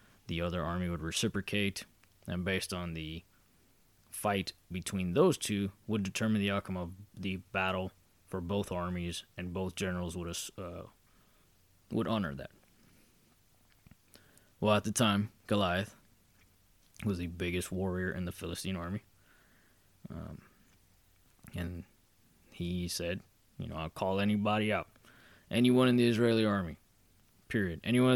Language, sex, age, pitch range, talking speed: English, male, 20-39, 90-105 Hz, 130 wpm